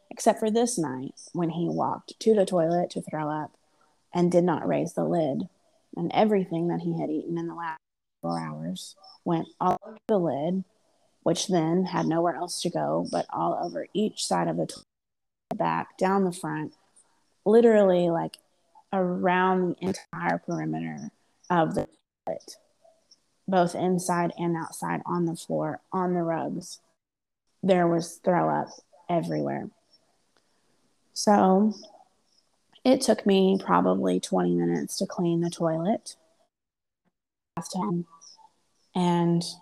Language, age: English, 30-49